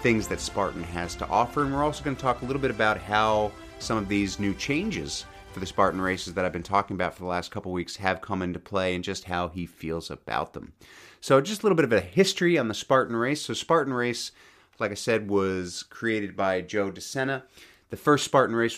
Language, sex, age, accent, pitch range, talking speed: English, male, 30-49, American, 95-120 Hz, 235 wpm